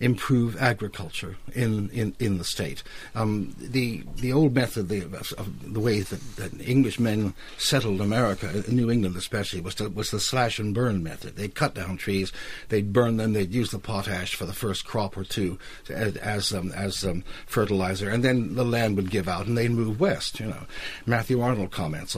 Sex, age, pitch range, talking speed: male, 60-79, 100-130 Hz, 200 wpm